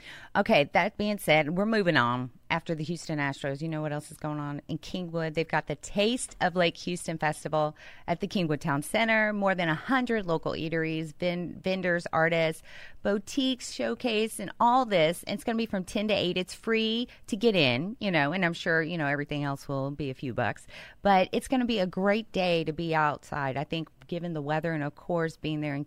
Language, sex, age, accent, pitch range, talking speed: English, female, 30-49, American, 145-185 Hz, 225 wpm